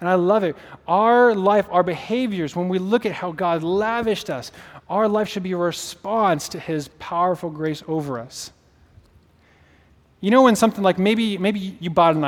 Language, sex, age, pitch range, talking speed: English, male, 30-49, 145-215 Hz, 185 wpm